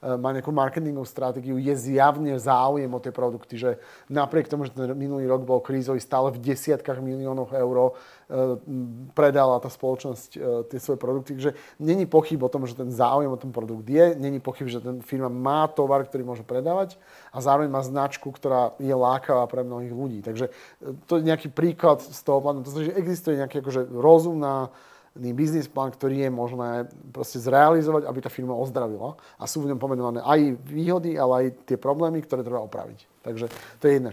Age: 30-49